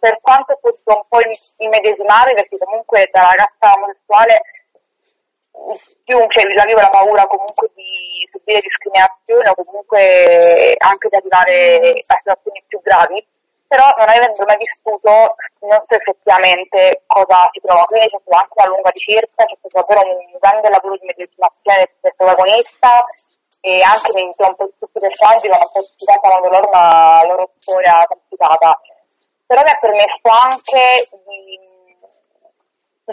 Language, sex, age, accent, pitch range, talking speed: Italian, female, 20-39, native, 190-230 Hz, 150 wpm